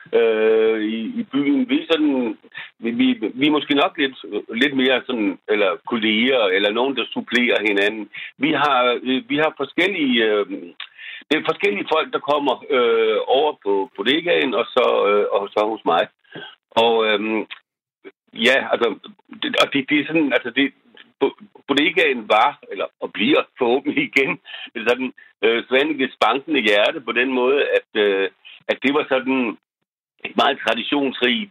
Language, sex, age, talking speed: Danish, male, 60-79, 140 wpm